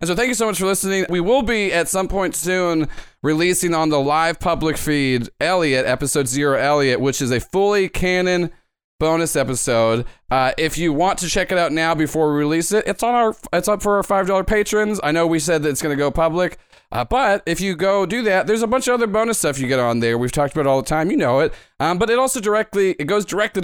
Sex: male